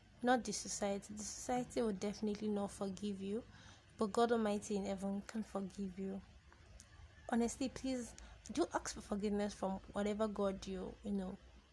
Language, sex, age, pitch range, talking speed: English, female, 20-39, 200-235 Hz, 155 wpm